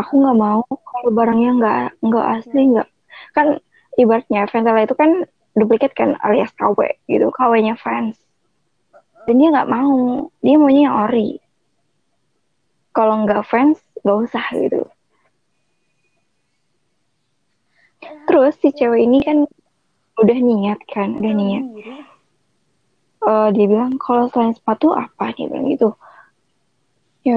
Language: Indonesian